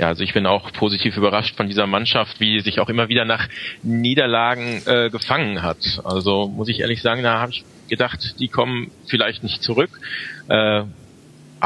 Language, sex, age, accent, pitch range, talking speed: German, male, 40-59, German, 105-130 Hz, 185 wpm